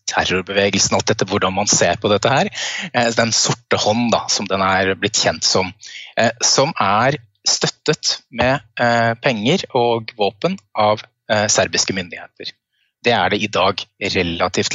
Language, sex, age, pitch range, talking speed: English, male, 20-39, 100-125 Hz, 145 wpm